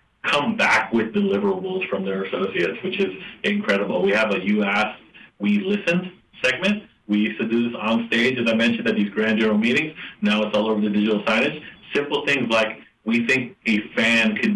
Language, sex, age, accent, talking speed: English, male, 40-59, American, 200 wpm